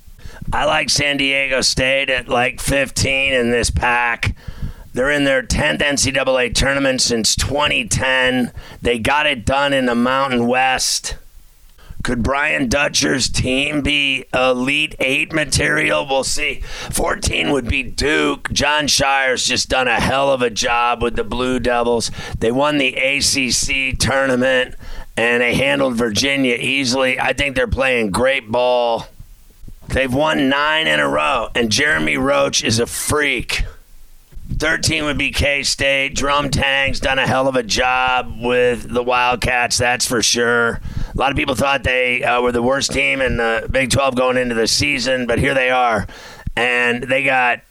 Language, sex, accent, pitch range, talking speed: English, male, American, 120-135 Hz, 160 wpm